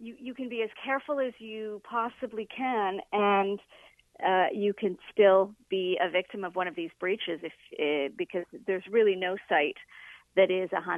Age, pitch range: 40-59, 175-225 Hz